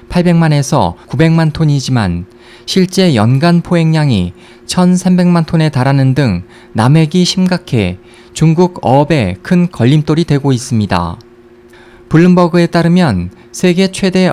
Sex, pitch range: male, 120-170 Hz